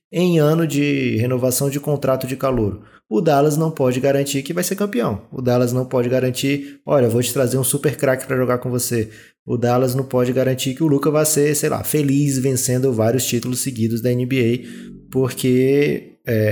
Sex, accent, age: male, Brazilian, 20-39